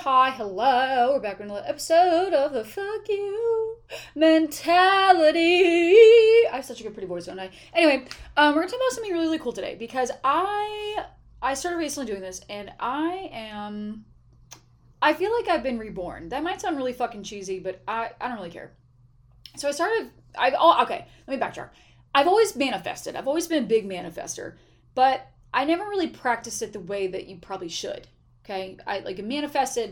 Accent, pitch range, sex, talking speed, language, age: American, 195-310 Hz, female, 195 wpm, English, 20-39